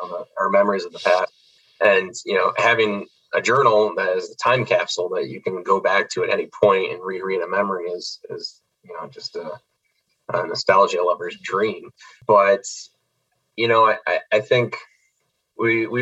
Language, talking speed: English, 180 wpm